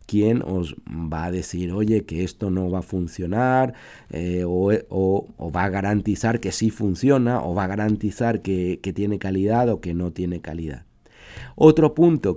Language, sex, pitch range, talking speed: Spanish, male, 95-125 Hz, 175 wpm